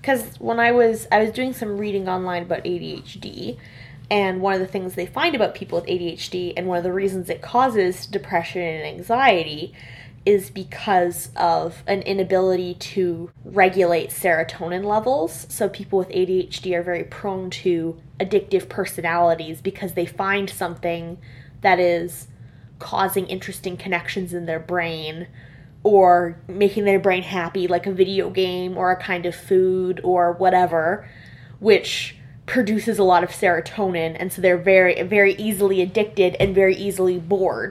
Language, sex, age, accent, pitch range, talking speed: English, female, 10-29, American, 170-195 Hz, 155 wpm